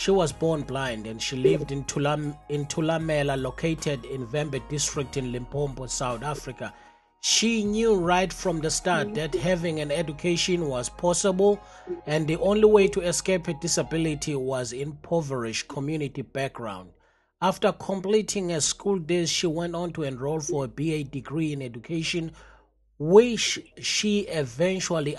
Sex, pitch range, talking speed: male, 145-175 Hz, 150 wpm